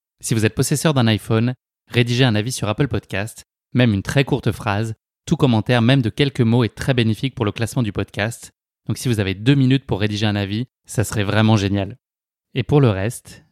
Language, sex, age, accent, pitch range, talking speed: French, male, 20-39, French, 105-120 Hz, 215 wpm